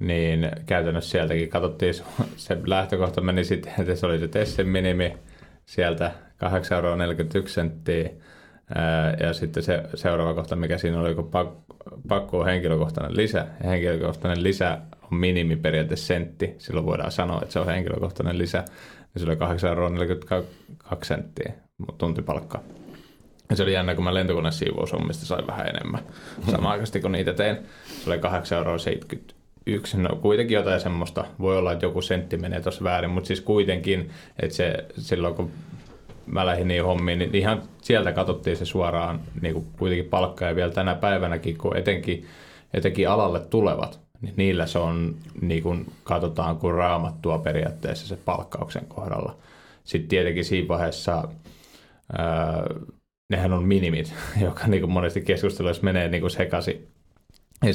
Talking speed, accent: 140 wpm, native